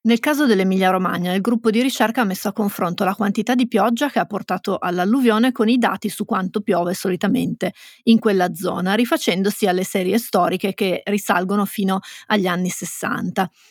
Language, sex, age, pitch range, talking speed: Italian, female, 30-49, 195-225 Hz, 170 wpm